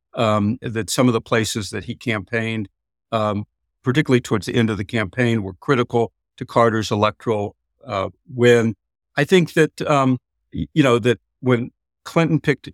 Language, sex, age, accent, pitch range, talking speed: English, male, 60-79, American, 110-135 Hz, 160 wpm